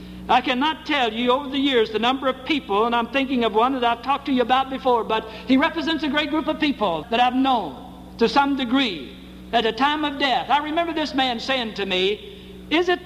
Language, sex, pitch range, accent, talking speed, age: English, male, 170-255 Hz, American, 235 wpm, 60-79